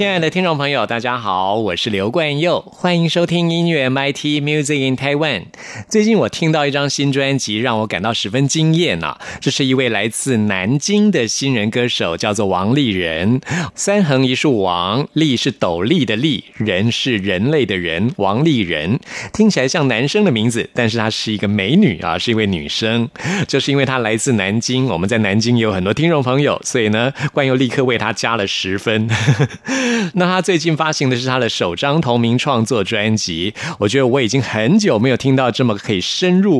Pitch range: 110-150 Hz